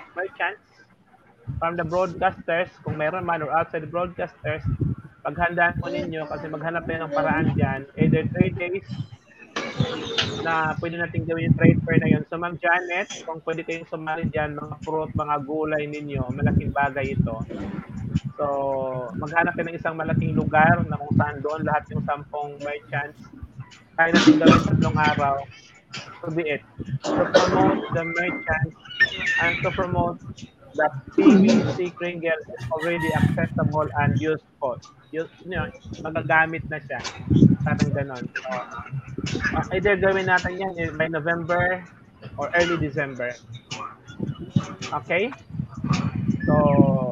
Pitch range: 145-170 Hz